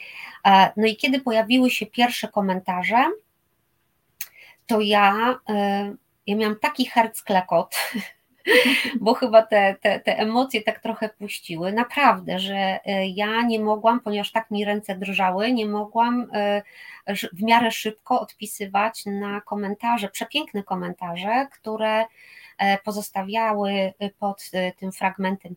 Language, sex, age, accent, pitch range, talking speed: Polish, female, 20-39, native, 195-230 Hz, 115 wpm